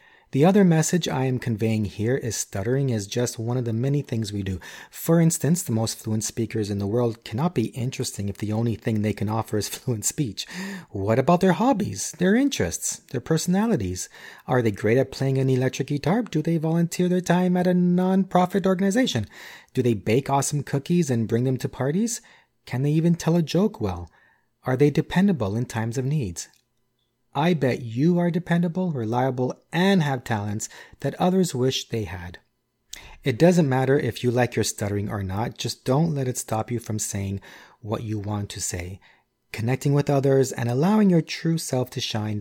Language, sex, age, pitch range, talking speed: English, male, 30-49, 115-165 Hz, 190 wpm